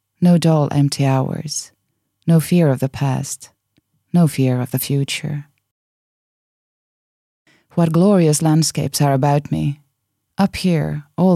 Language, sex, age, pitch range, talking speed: Finnish, female, 20-39, 135-160 Hz, 120 wpm